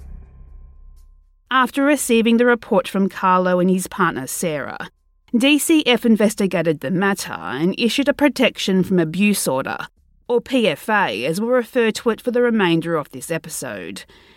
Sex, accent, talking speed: female, Australian, 140 wpm